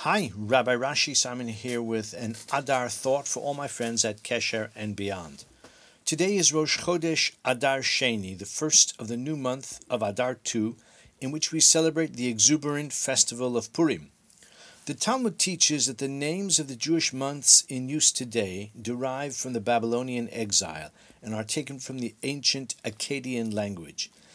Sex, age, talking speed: male, 50-69, 165 wpm